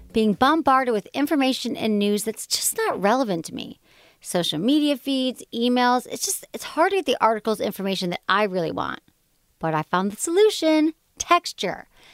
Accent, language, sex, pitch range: American, English, female, 200-290 Hz